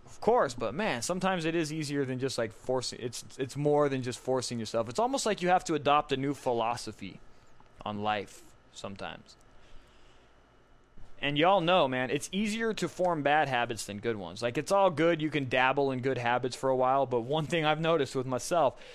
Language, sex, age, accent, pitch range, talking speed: English, male, 20-39, American, 120-170 Hz, 205 wpm